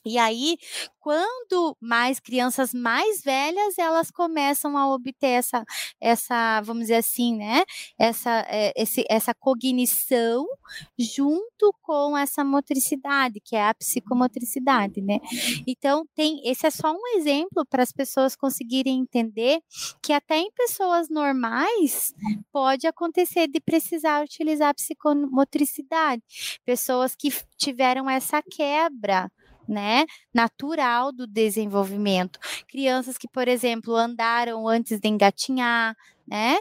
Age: 20-39